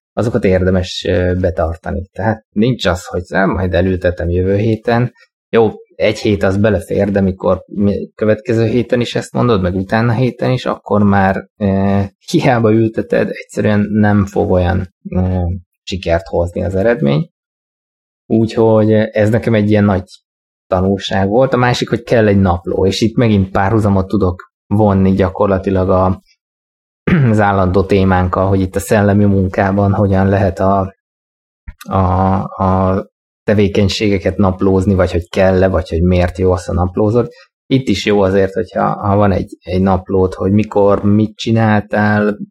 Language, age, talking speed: Hungarian, 20-39, 145 wpm